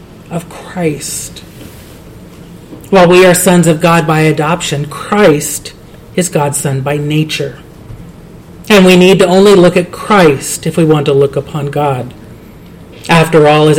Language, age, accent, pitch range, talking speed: English, 40-59, American, 145-175 Hz, 150 wpm